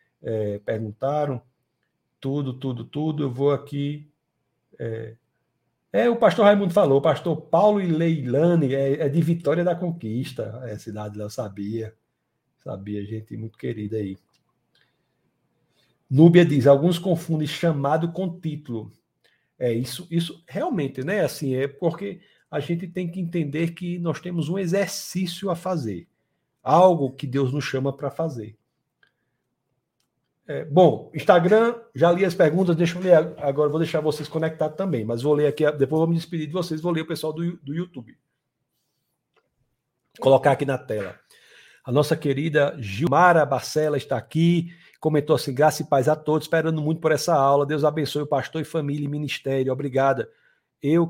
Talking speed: 160 wpm